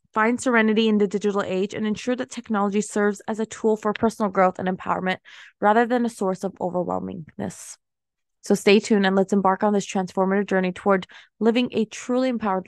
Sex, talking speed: female, 190 wpm